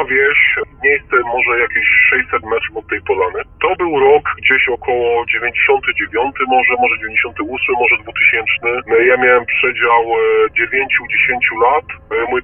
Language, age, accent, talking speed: Polish, 20-39, native, 125 wpm